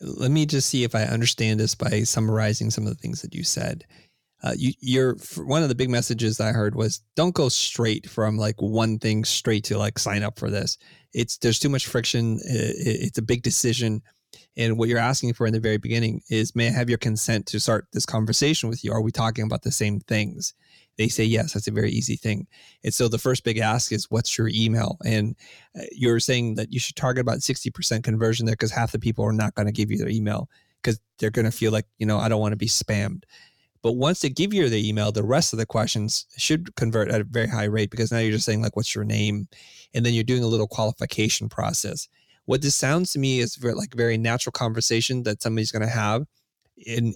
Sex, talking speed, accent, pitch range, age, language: male, 240 wpm, American, 110-125 Hz, 20-39, English